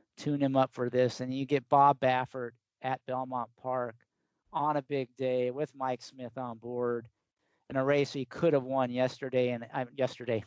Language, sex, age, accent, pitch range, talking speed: English, male, 50-69, American, 125-145 Hz, 190 wpm